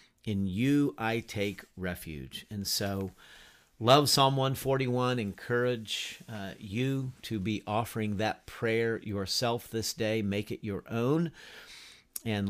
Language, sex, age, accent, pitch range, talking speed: English, male, 50-69, American, 100-125 Hz, 125 wpm